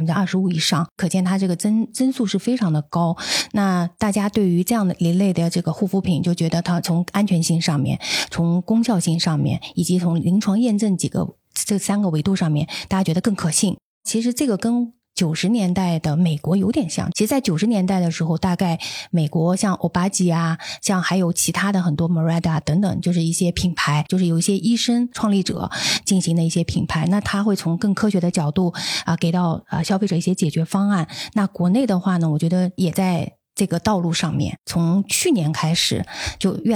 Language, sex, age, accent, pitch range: Chinese, female, 20-39, native, 165-200 Hz